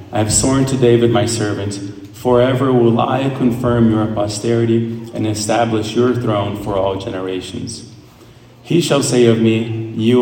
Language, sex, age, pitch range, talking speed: English, male, 40-59, 105-120 Hz, 155 wpm